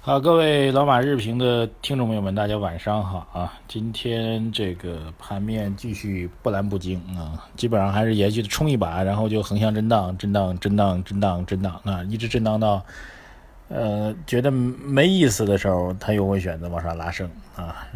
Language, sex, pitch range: Chinese, male, 95-120 Hz